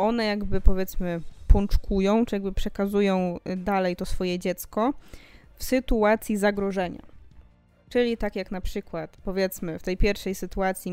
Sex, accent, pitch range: female, native, 180-215 Hz